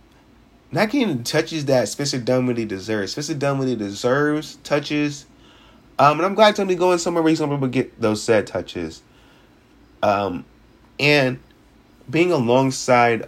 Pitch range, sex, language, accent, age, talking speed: 110-155 Hz, male, English, American, 20-39, 135 wpm